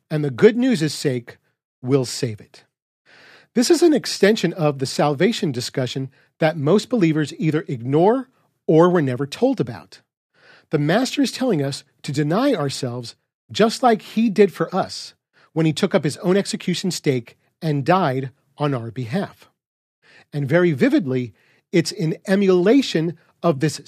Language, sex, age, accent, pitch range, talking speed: English, male, 40-59, American, 145-210 Hz, 160 wpm